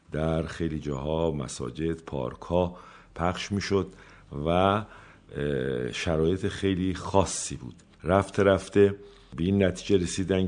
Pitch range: 80-90 Hz